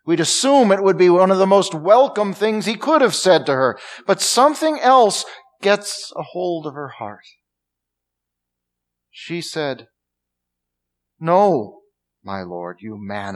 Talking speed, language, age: 150 wpm, English, 50-69